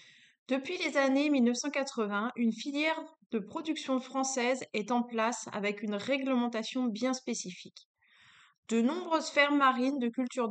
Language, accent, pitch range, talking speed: French, French, 220-265 Hz, 130 wpm